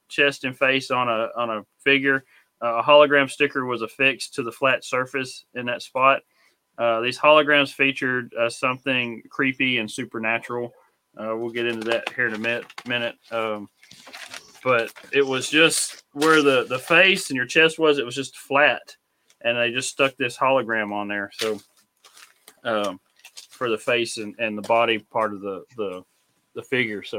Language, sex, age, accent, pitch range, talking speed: English, male, 30-49, American, 115-140 Hz, 180 wpm